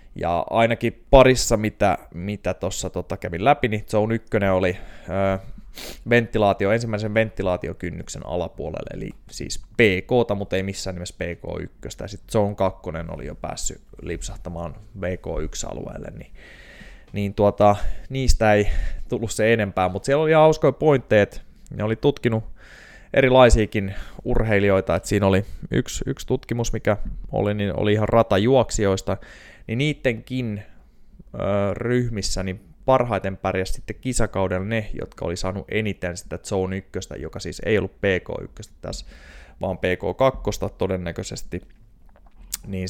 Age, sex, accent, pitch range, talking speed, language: 20-39, male, native, 95-110 Hz, 135 wpm, Finnish